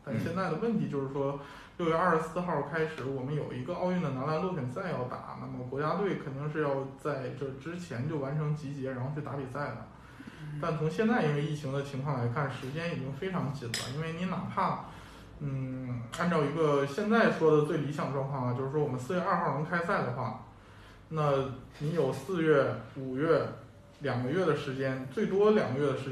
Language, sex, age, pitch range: Chinese, male, 20-39, 130-160 Hz